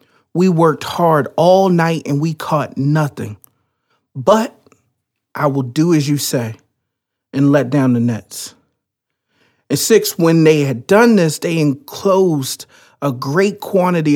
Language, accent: English, American